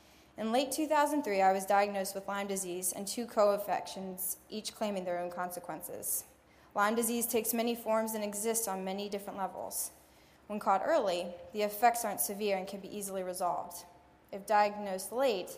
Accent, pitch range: American, 185-215 Hz